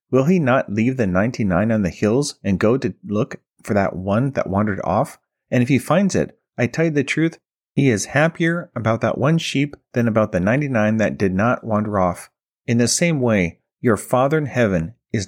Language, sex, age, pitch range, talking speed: English, male, 40-59, 105-140 Hz, 210 wpm